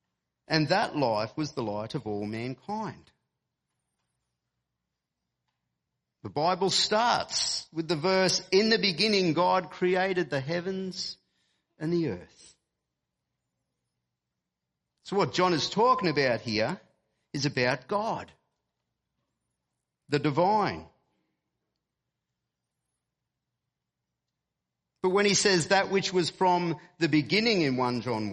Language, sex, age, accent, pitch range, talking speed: English, male, 50-69, Australian, 120-190 Hz, 105 wpm